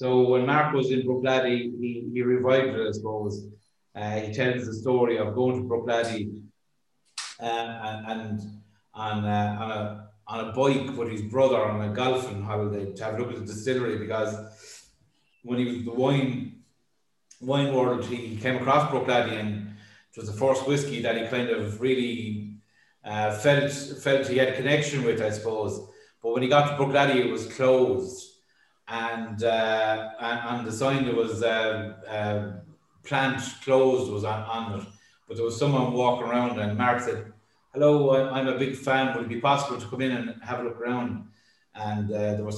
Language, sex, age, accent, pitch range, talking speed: English, male, 30-49, Irish, 110-130 Hz, 190 wpm